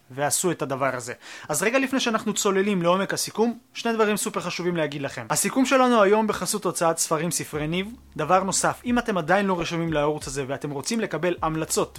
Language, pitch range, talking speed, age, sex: Hebrew, 165-215 Hz, 190 wpm, 20-39, male